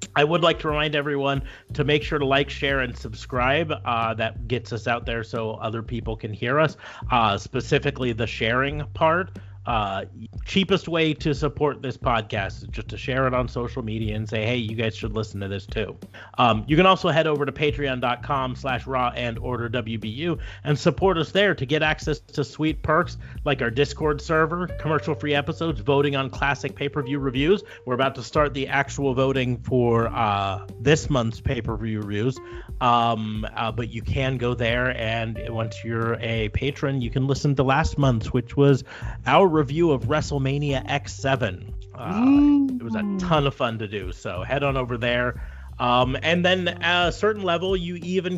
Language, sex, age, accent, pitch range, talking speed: English, male, 30-49, American, 115-150 Hz, 190 wpm